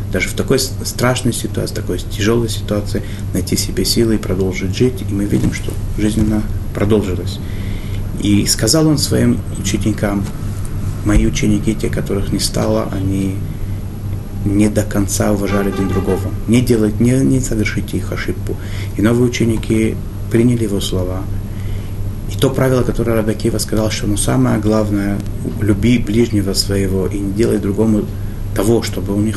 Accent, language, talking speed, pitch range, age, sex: native, Russian, 145 wpm, 100-110 Hz, 30-49, male